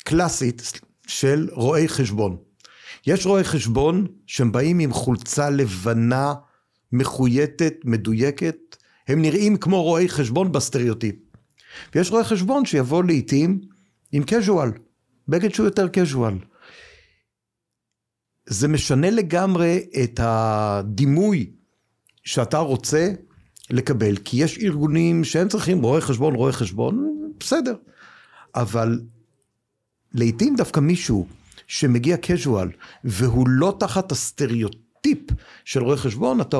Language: Hebrew